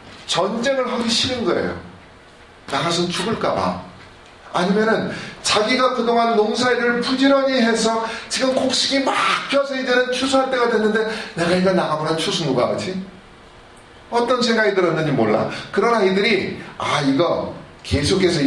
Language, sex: Korean, male